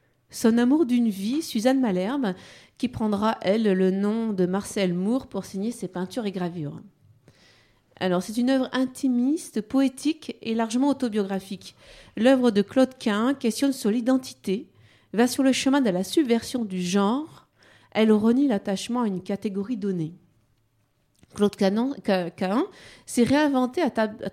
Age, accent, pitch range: 40-59, French, 185-255 Hz